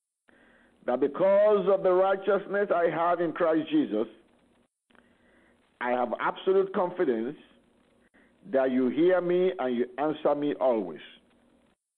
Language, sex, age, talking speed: English, male, 50-69, 115 wpm